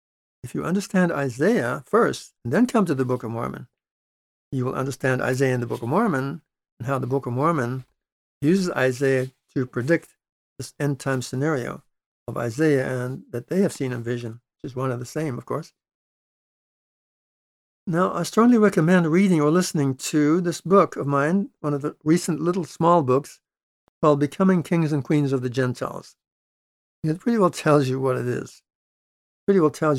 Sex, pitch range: male, 125-155 Hz